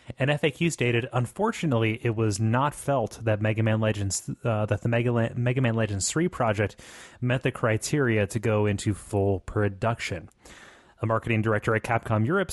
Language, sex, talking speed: English, male, 165 wpm